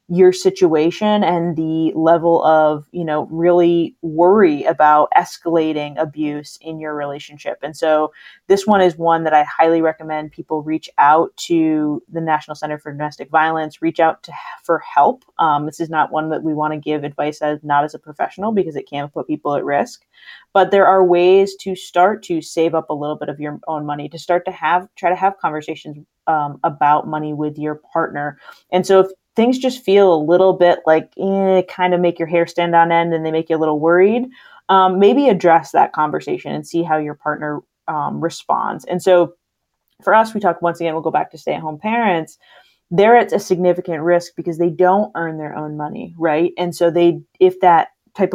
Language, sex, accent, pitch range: English, female, American, 155-185 Hz